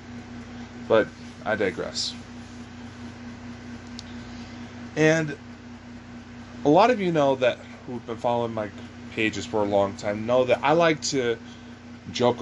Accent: American